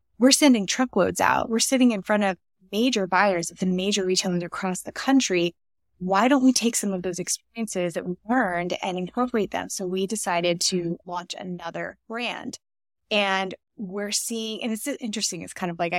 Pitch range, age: 180-230 Hz, 20-39